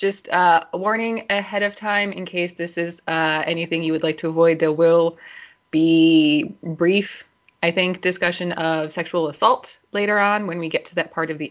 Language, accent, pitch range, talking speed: English, American, 160-200 Hz, 200 wpm